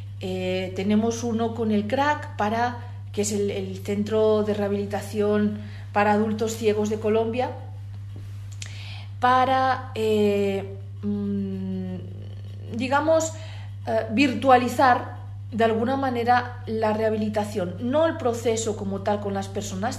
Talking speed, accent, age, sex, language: 110 wpm, Spanish, 40-59, female, Spanish